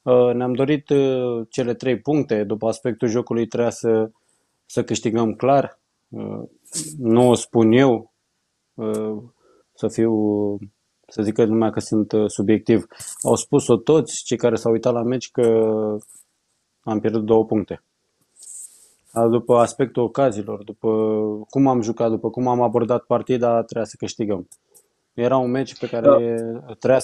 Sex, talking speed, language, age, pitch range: male, 135 wpm, Romanian, 20-39, 110-125 Hz